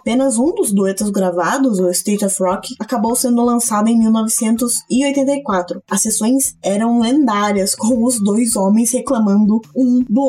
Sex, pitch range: female, 190-250 Hz